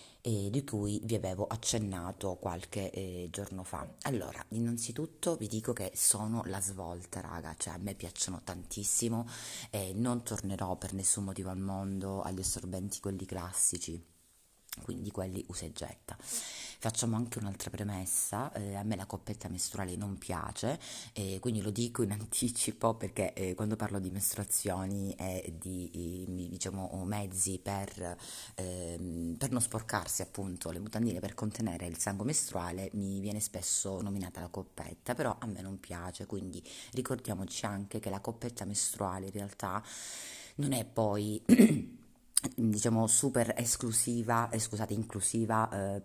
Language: Italian